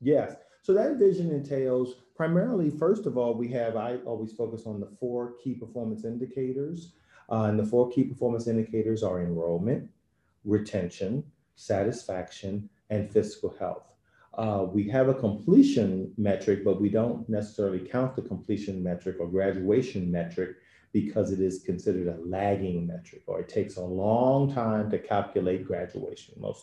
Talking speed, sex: 155 wpm, male